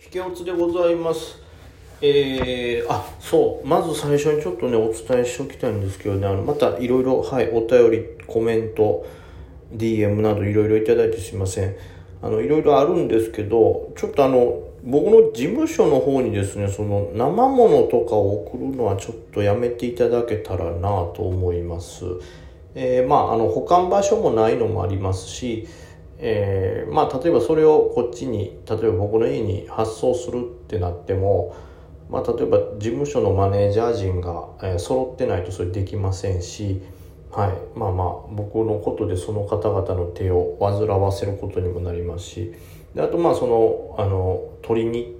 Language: Japanese